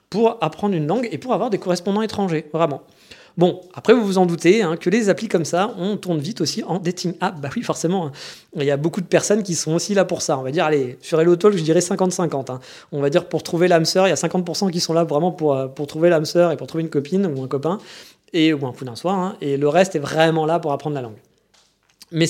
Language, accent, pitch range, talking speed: French, French, 145-180 Hz, 280 wpm